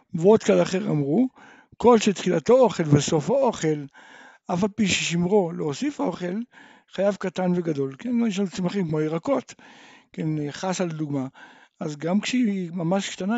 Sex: male